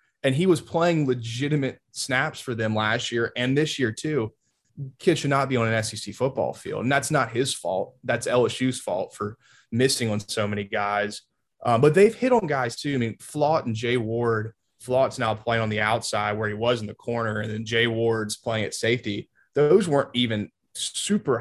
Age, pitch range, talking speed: 20-39, 105-135 Hz, 205 wpm